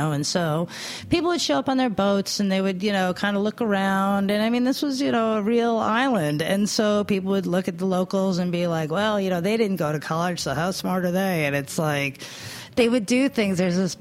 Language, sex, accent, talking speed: English, female, American, 260 wpm